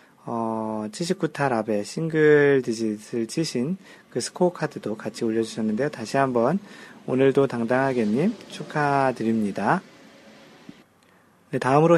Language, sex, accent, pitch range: Korean, male, native, 110-150 Hz